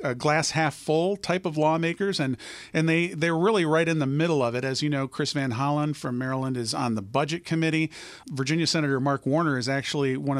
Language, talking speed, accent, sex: English, 225 wpm, American, male